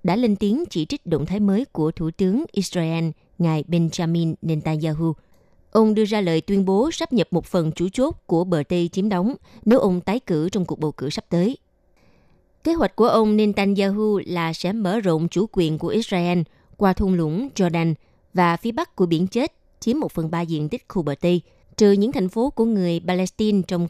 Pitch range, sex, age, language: 170-220 Hz, female, 20-39, Vietnamese